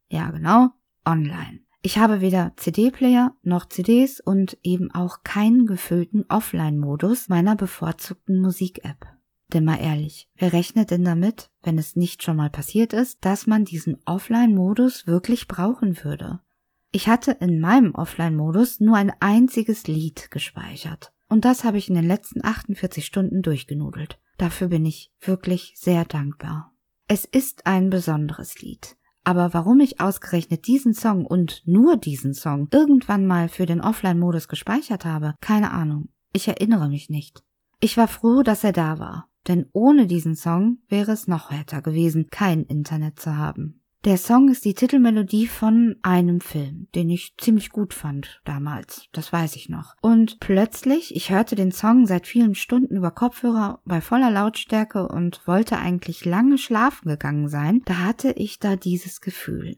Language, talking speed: German, 160 wpm